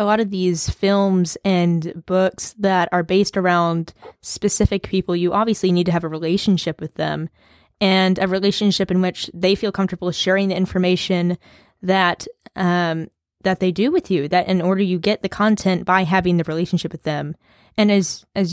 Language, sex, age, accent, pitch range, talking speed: English, female, 10-29, American, 180-205 Hz, 180 wpm